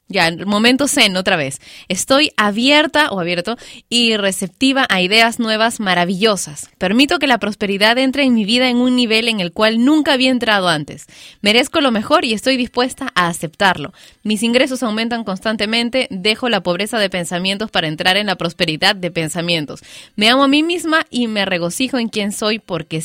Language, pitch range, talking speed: Spanish, 195-255 Hz, 180 wpm